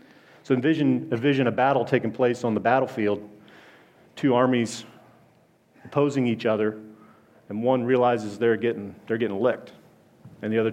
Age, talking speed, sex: 40-59, 140 wpm, male